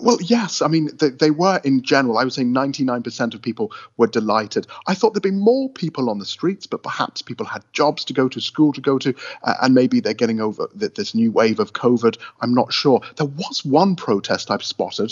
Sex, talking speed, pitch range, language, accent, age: male, 235 wpm, 115-150 Hz, English, British, 30-49